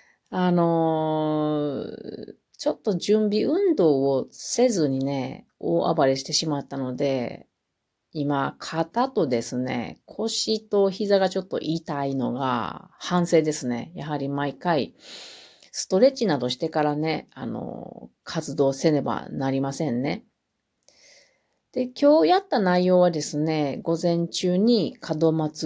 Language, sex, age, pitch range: Japanese, female, 40-59, 145-210 Hz